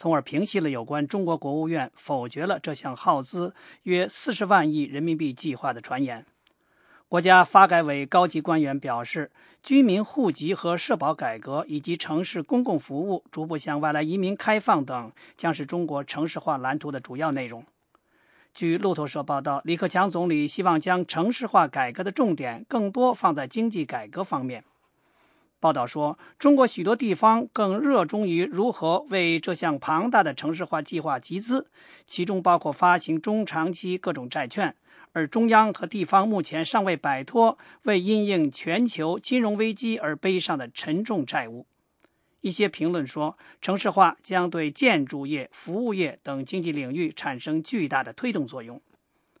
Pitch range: 155-210 Hz